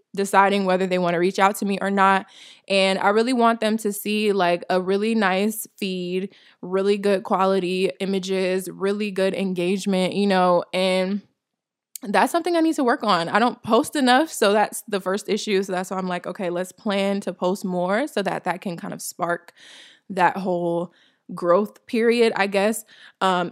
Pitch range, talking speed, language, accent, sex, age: 185-225 Hz, 190 wpm, English, American, female, 20-39